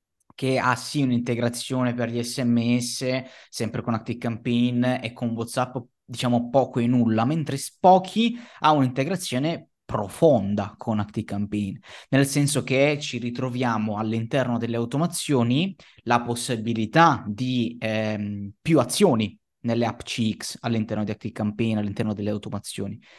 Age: 20-39